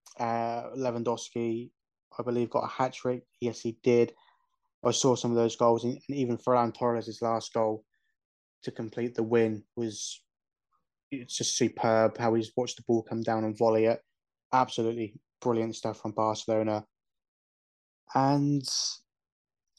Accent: British